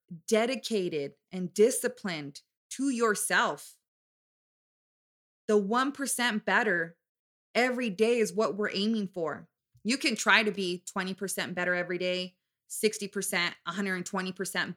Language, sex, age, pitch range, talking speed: English, female, 20-39, 185-235 Hz, 105 wpm